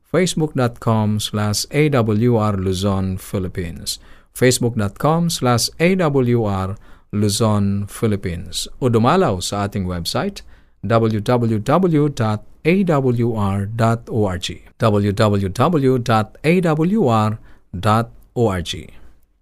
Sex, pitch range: male, 95-125 Hz